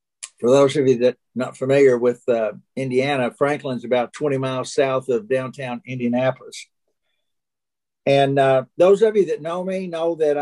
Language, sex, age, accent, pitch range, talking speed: English, male, 50-69, American, 130-170 Hz, 165 wpm